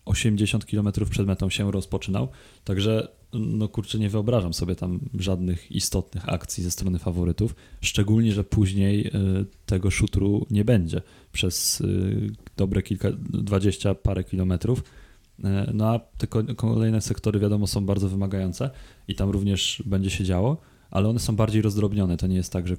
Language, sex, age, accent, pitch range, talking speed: Polish, male, 20-39, native, 95-105 Hz, 150 wpm